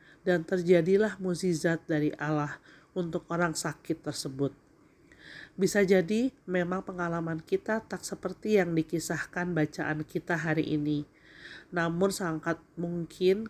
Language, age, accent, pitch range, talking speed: Indonesian, 40-59, native, 160-185 Hz, 110 wpm